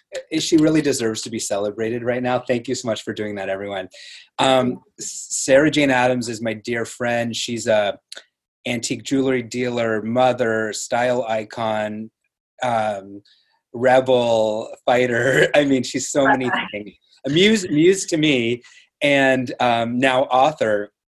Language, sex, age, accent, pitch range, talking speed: English, male, 30-49, American, 110-135 Hz, 140 wpm